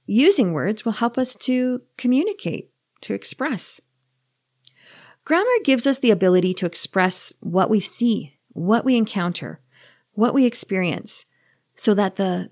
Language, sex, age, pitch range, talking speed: English, female, 40-59, 180-245 Hz, 135 wpm